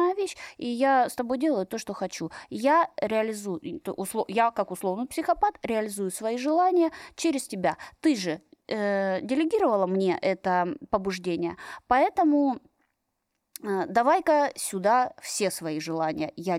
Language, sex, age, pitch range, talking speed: Russian, female, 20-39, 195-310 Hz, 125 wpm